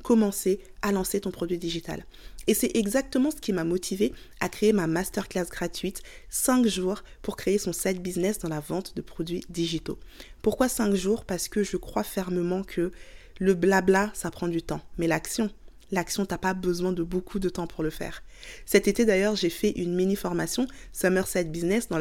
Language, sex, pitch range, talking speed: French, female, 180-220 Hz, 190 wpm